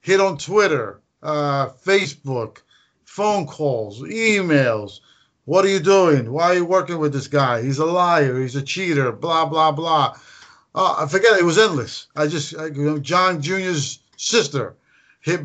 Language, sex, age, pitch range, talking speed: English, male, 50-69, 145-185 Hz, 160 wpm